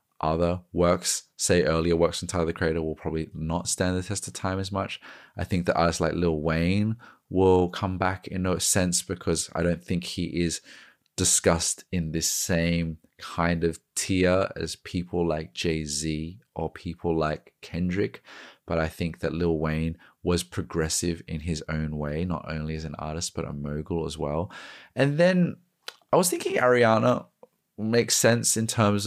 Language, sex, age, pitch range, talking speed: English, male, 20-39, 80-95 Hz, 175 wpm